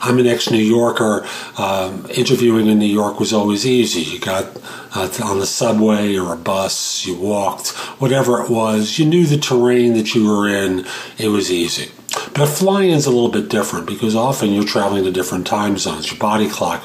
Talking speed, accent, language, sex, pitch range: 195 wpm, American, English, male, 100-120 Hz